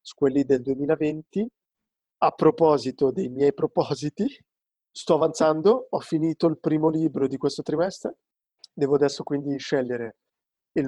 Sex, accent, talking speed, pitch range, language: male, native, 125 wpm, 135-165 Hz, Italian